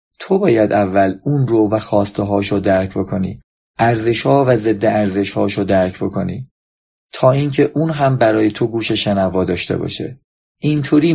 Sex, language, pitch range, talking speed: male, Persian, 105-135 Hz, 155 wpm